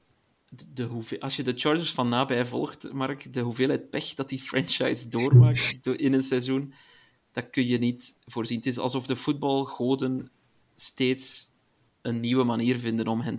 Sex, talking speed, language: male, 155 wpm, Dutch